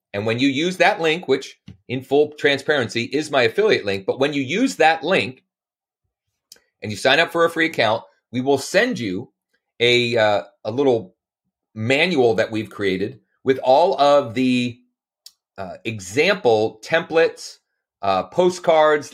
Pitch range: 110-150 Hz